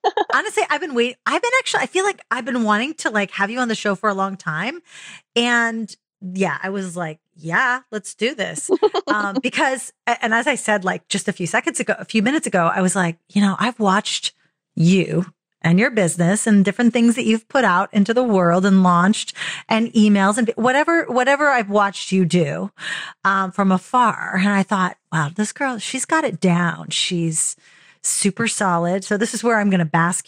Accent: American